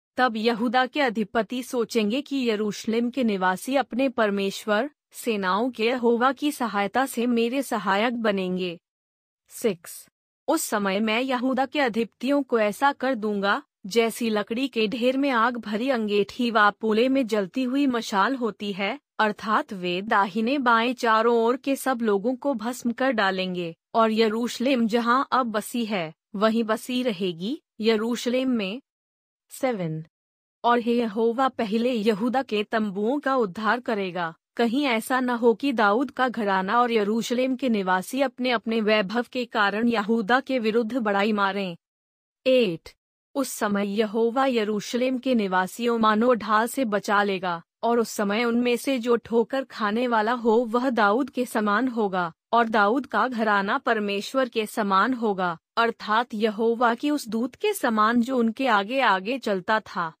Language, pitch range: Hindi, 210-255 Hz